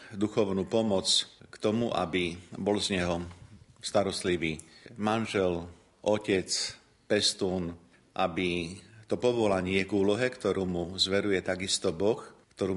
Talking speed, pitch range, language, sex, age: 115 wpm, 90-105 Hz, Slovak, male, 50-69